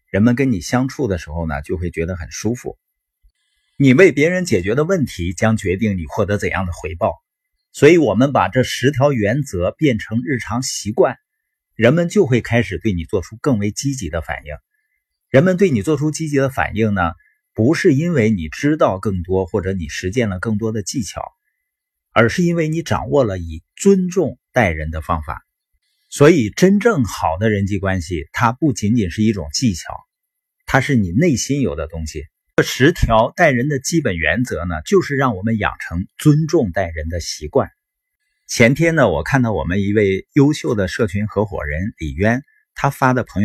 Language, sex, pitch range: Chinese, male, 95-145 Hz